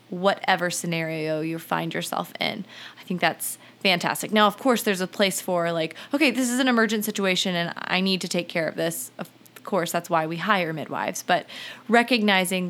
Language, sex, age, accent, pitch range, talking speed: English, female, 20-39, American, 185-245 Hz, 195 wpm